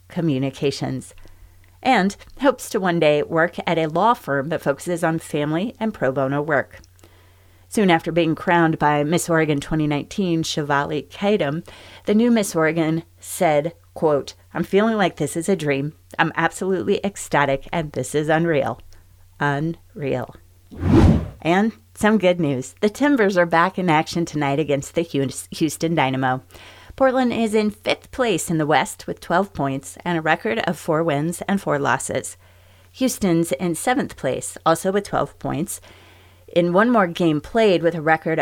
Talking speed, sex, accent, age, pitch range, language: 160 wpm, female, American, 30-49, 140-185 Hz, English